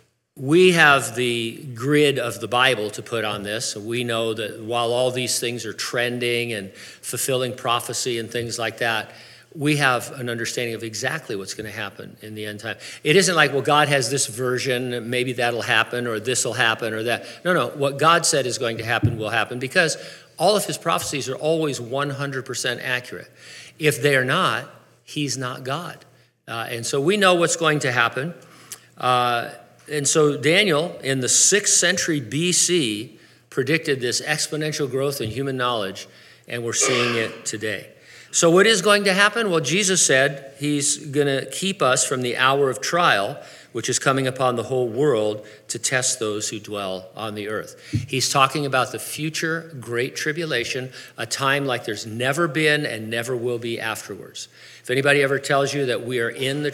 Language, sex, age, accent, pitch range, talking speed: English, male, 50-69, American, 120-145 Hz, 185 wpm